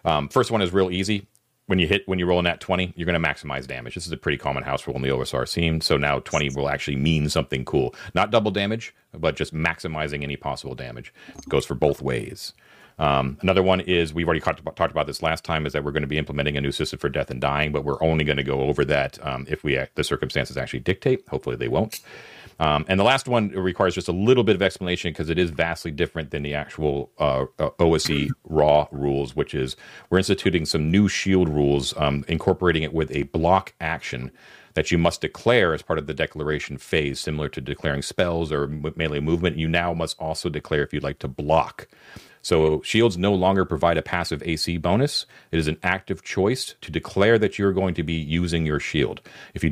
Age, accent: 40-59, American